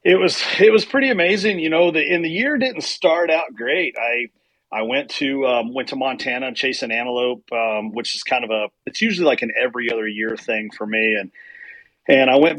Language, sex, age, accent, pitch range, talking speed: English, male, 40-59, American, 110-150 Hz, 220 wpm